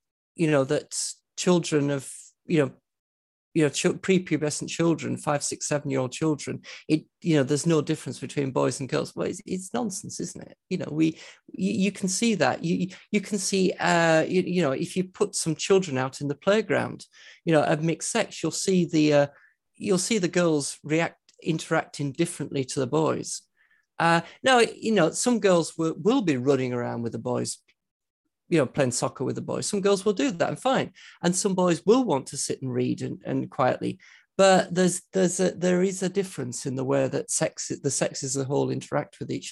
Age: 40-59